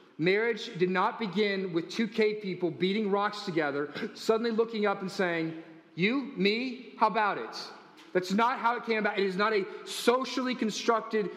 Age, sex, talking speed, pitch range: 40-59, male, 175 wpm, 185-230 Hz